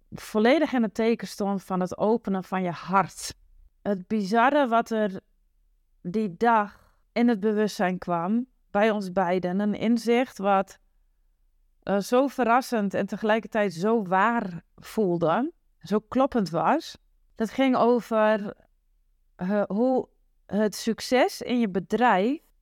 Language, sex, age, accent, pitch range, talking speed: Dutch, female, 30-49, Dutch, 190-230 Hz, 125 wpm